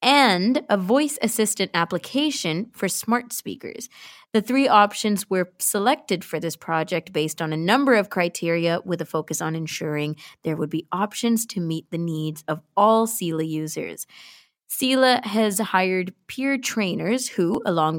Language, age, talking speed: English, 20-39, 155 wpm